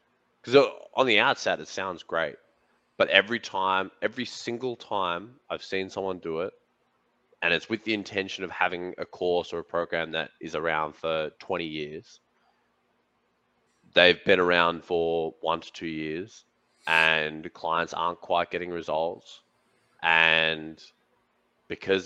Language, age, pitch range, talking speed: English, 20-39, 80-90 Hz, 140 wpm